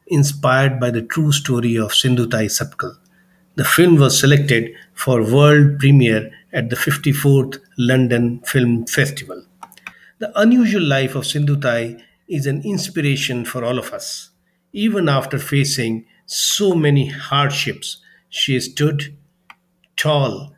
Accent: Indian